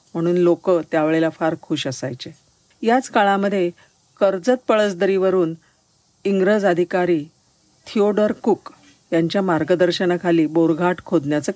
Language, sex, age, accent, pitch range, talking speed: Marathi, female, 50-69, native, 155-195 Hz, 95 wpm